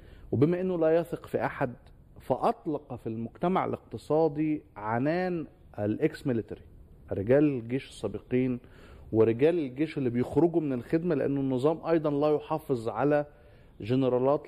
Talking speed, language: 115 wpm, Arabic